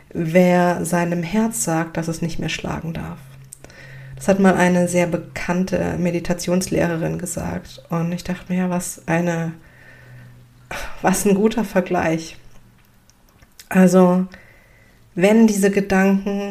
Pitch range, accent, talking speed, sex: 160-190 Hz, German, 115 wpm, female